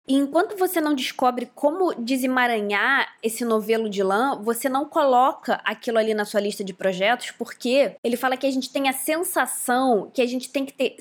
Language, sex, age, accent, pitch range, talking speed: Portuguese, female, 20-39, Brazilian, 220-280 Hz, 195 wpm